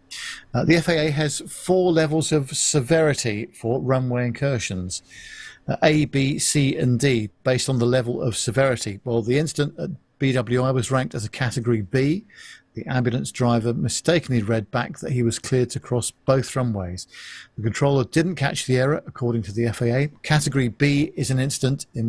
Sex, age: male, 50-69